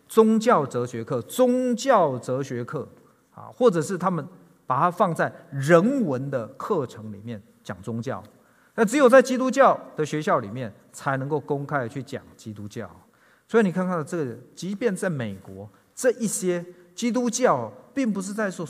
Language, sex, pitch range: Chinese, male, 120-205 Hz